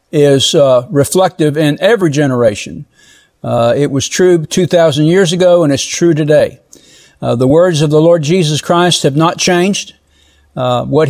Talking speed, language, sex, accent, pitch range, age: 160 wpm, English, male, American, 140-185 Hz, 60-79